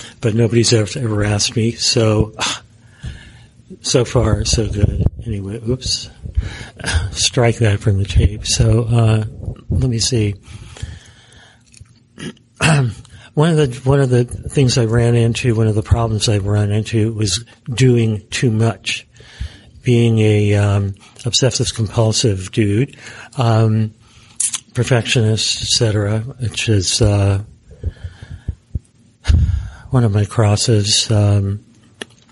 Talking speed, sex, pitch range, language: 115 wpm, male, 105-120 Hz, English